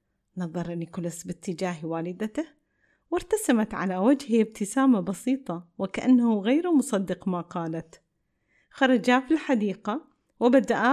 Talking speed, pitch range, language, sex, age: 100 wpm, 200-265 Hz, Arabic, female, 30-49